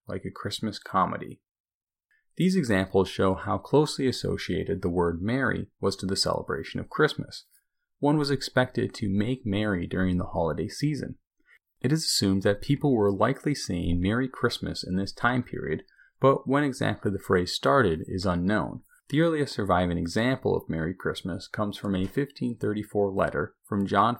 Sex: male